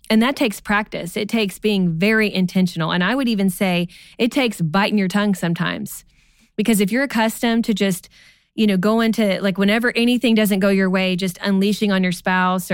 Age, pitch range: 20-39, 180-215 Hz